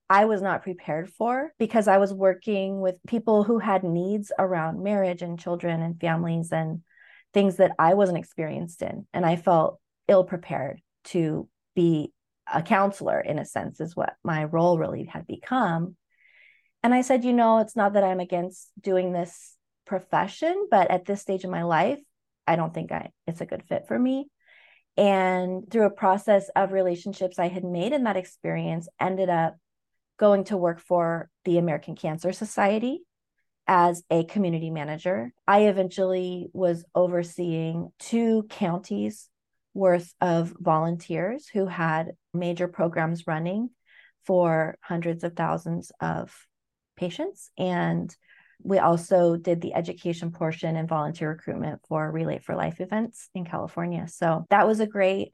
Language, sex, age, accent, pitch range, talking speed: English, female, 30-49, American, 170-200 Hz, 155 wpm